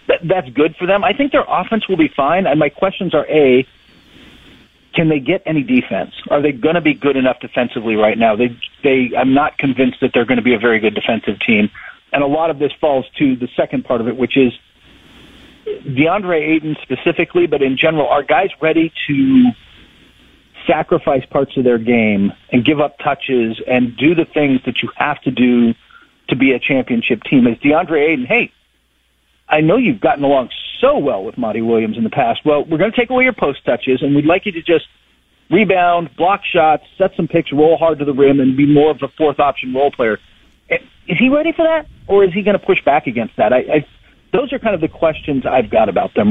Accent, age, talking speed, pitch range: American, 40-59, 215 wpm, 125-165 Hz